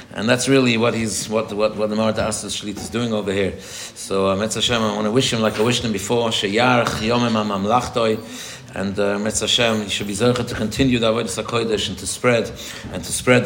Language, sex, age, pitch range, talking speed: English, male, 60-79, 105-120 Hz, 230 wpm